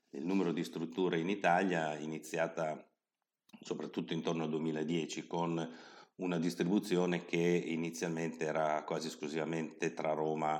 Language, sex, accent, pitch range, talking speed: Italian, male, native, 80-85 Hz, 125 wpm